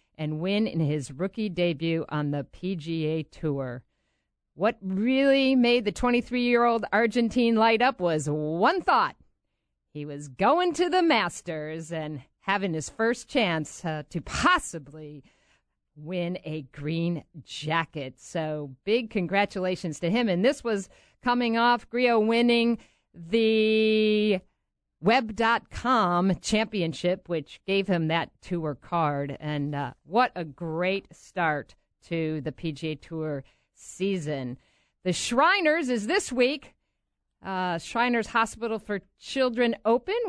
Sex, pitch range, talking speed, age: female, 160-235 Hz, 120 wpm, 50-69